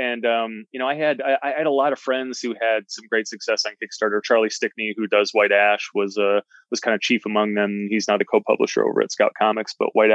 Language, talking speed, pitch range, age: English, 265 wpm, 105-120 Hz, 20-39